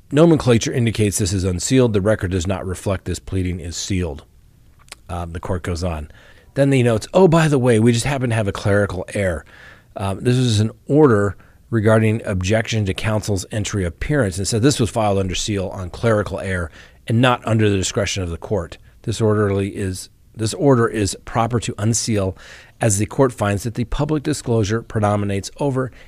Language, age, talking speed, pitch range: English, 40-59, 190 wpm, 95-120 Hz